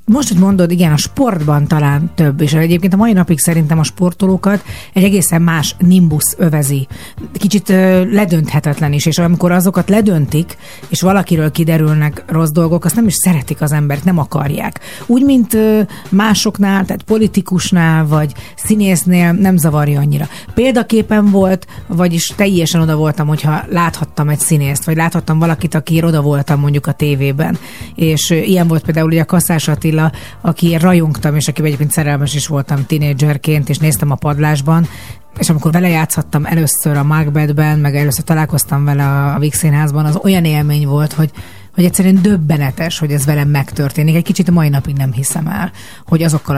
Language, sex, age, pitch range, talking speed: Hungarian, female, 30-49, 150-180 Hz, 165 wpm